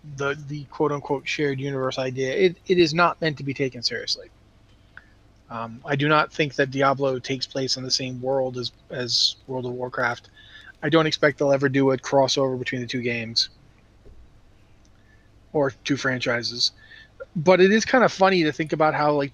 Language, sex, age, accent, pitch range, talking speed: English, male, 30-49, American, 120-150 Hz, 185 wpm